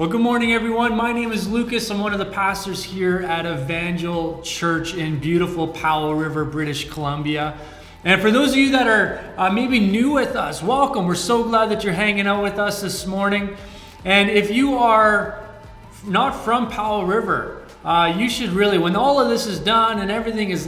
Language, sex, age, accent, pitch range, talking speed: English, male, 30-49, American, 175-225 Hz, 195 wpm